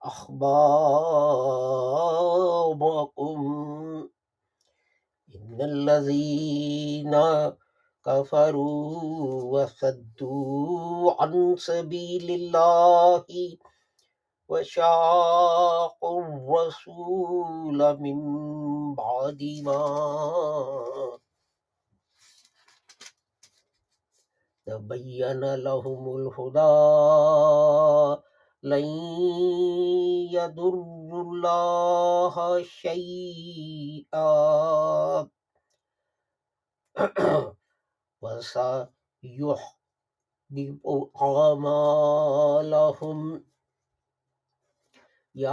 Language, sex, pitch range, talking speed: English, male, 145-175 Hz, 30 wpm